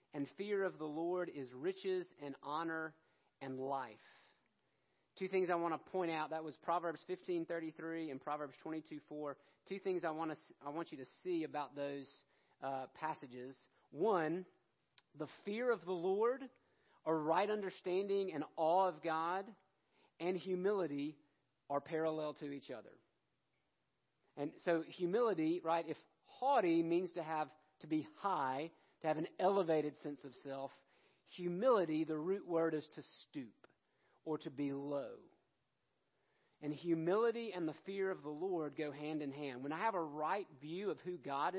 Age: 40-59